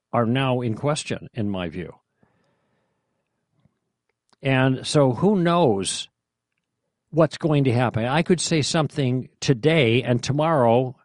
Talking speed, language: 120 wpm, English